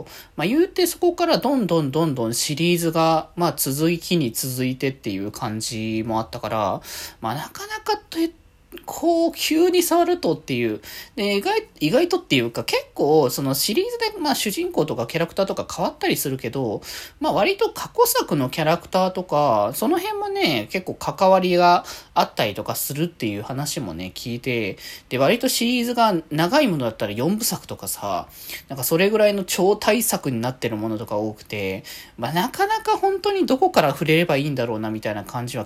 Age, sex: 20-39, male